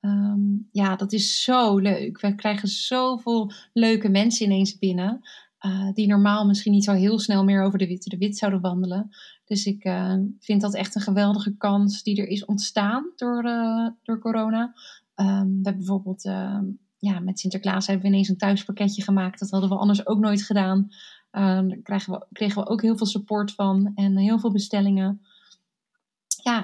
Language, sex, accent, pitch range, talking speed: Dutch, female, Dutch, 195-215 Hz, 185 wpm